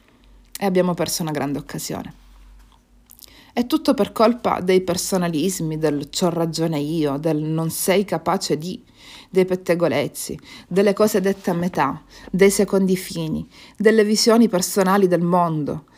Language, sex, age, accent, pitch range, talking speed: Italian, female, 40-59, native, 160-205 Hz, 135 wpm